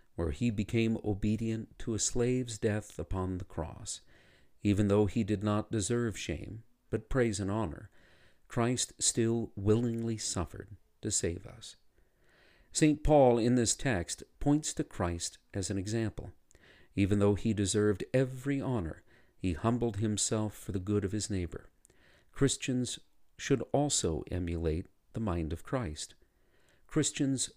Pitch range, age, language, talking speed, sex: 95-120 Hz, 50-69, English, 140 wpm, male